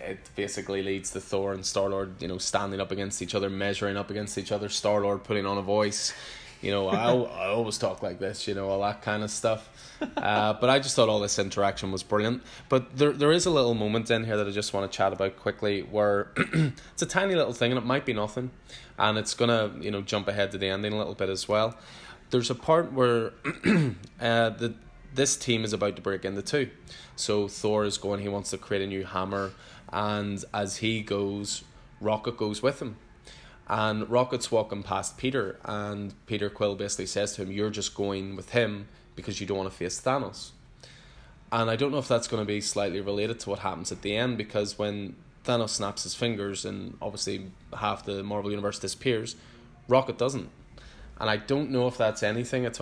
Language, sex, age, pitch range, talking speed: English, male, 10-29, 100-115 Hz, 215 wpm